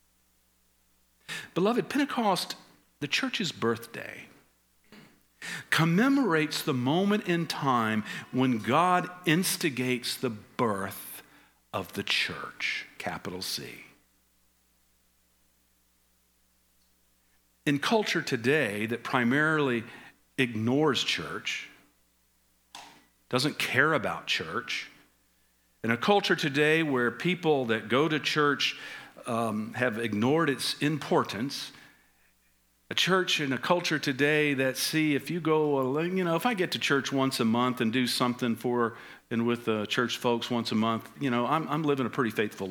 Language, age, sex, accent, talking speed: English, 50-69, male, American, 125 wpm